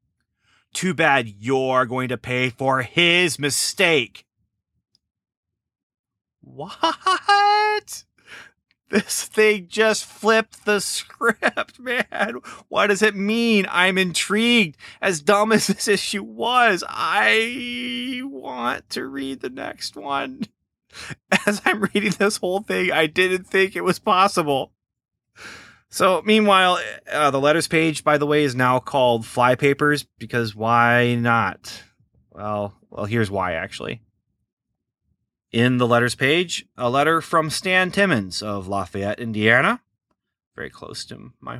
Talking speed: 125 wpm